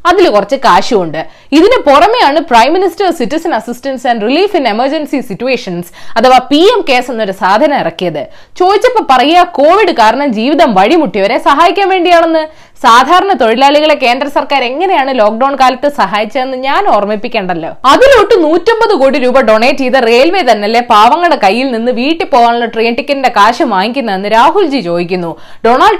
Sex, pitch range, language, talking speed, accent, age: female, 230-345 Hz, Malayalam, 105 wpm, native, 20-39